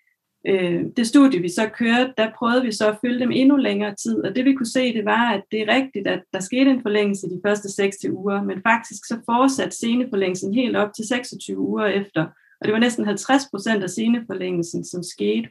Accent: native